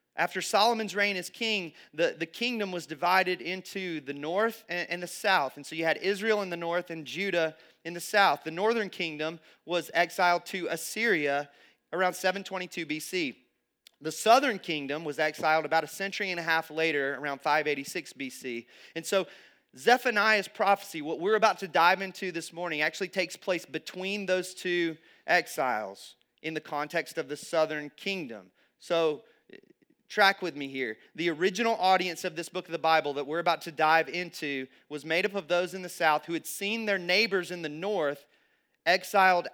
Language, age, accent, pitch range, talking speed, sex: English, 30-49, American, 150-190 Hz, 180 wpm, male